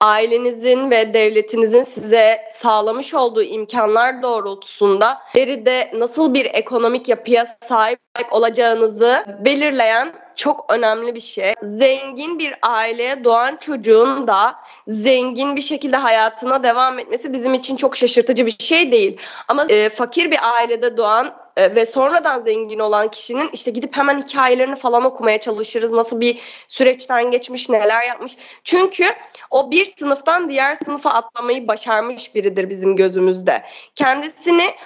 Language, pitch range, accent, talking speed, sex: Turkish, 225-280 Hz, native, 130 wpm, female